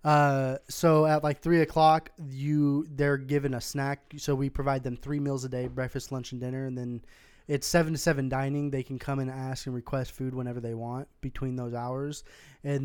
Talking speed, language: 210 wpm, English